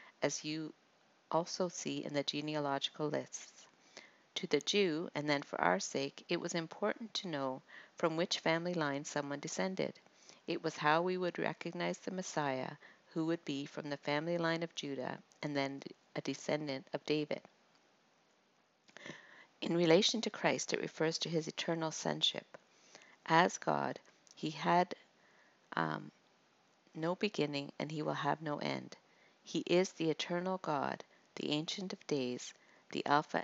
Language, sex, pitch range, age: English, female, 145-175 Hz, 50-69